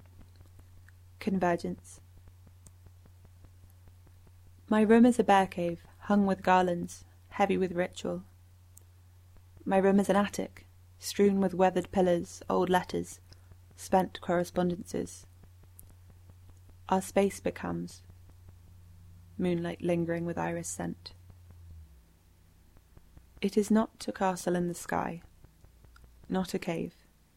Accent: British